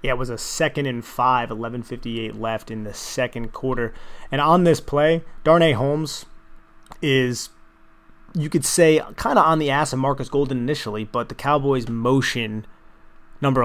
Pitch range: 115-140 Hz